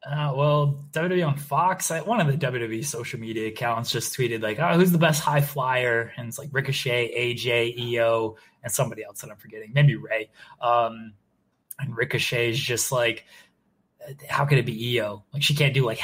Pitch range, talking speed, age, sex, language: 120-175 Hz, 195 wpm, 20-39, male, English